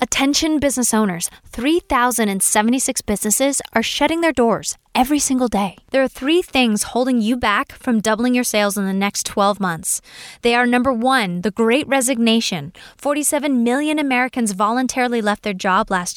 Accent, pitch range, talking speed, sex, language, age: American, 210-275 Hz, 160 wpm, female, English, 10-29